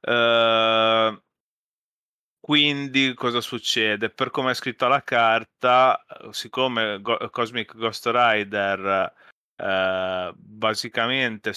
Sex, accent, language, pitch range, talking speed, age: male, native, Italian, 100-115 Hz, 90 wpm, 30-49